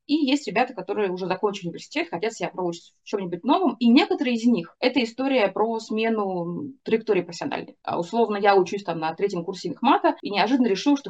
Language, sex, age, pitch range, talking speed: Russian, female, 20-39, 180-240 Hz, 190 wpm